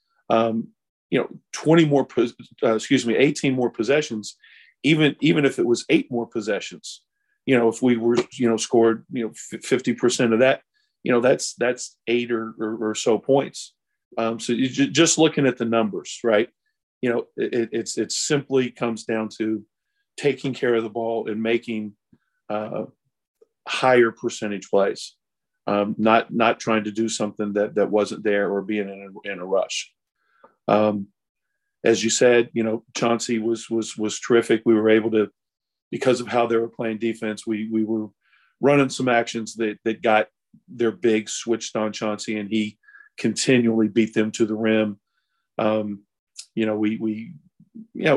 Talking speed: 170 wpm